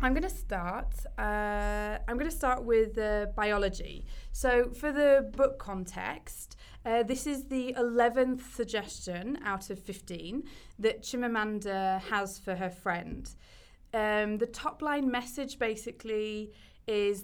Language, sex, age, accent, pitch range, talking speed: English, female, 20-39, British, 190-235 Hz, 135 wpm